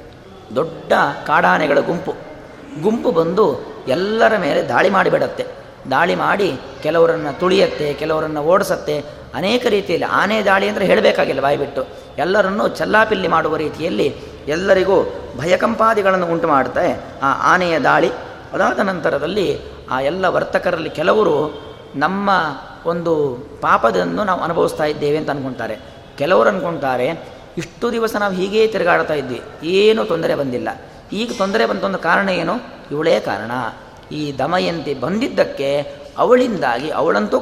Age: 20-39